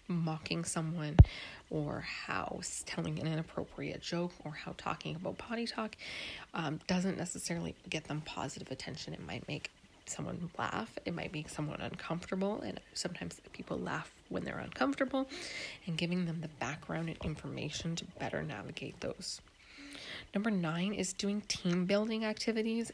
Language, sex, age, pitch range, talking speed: English, female, 30-49, 155-195 Hz, 145 wpm